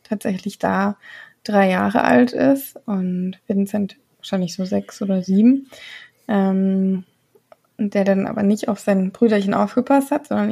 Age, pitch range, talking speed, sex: 20-39, 200-245 Hz, 135 wpm, female